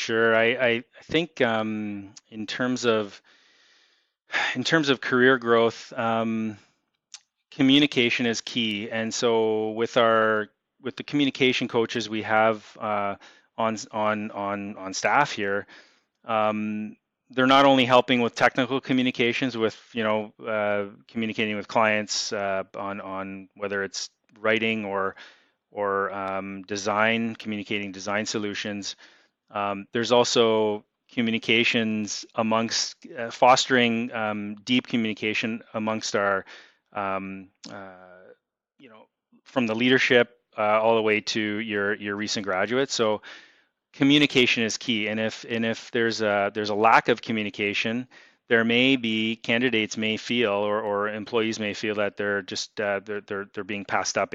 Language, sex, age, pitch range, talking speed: English, male, 30-49, 100-115 Hz, 140 wpm